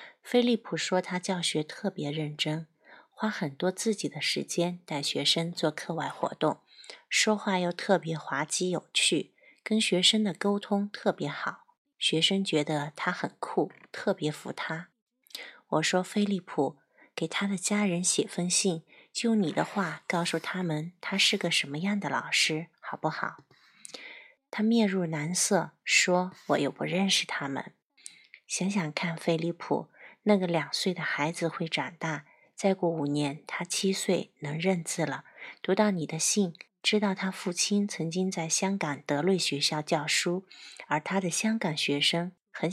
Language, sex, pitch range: Chinese, female, 160-200 Hz